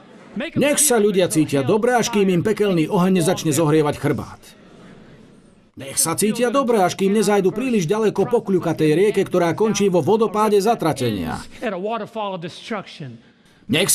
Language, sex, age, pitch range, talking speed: Slovak, male, 50-69, 165-215 Hz, 130 wpm